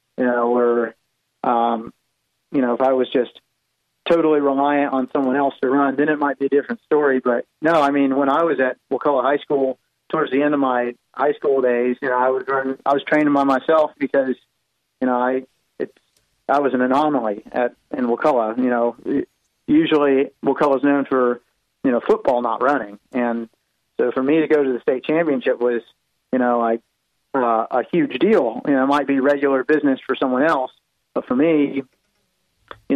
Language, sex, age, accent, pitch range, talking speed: English, male, 30-49, American, 125-140 Hz, 200 wpm